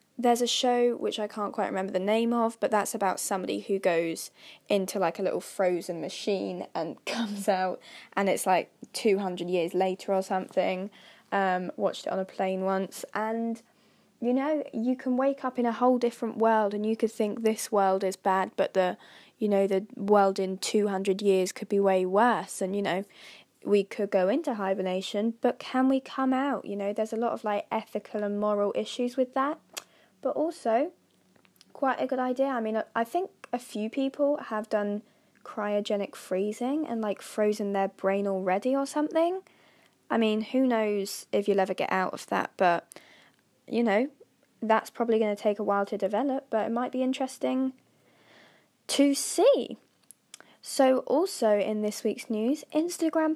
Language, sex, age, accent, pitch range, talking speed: English, female, 10-29, British, 195-260 Hz, 180 wpm